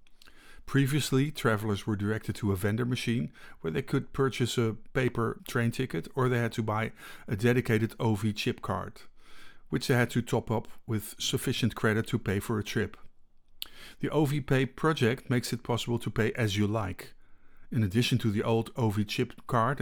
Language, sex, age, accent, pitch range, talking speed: English, male, 50-69, Dutch, 110-130 Hz, 180 wpm